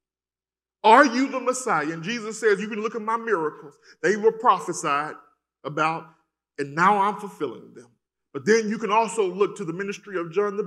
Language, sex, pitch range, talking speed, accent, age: English, male, 160-230 Hz, 190 wpm, American, 40-59